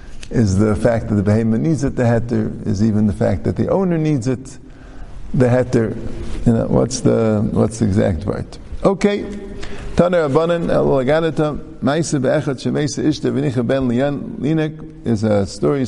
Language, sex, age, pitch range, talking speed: English, male, 50-69, 110-150 Hz, 135 wpm